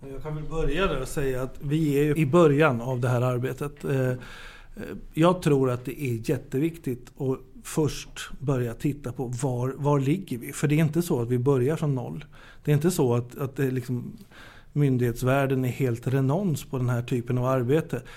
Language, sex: Swedish, male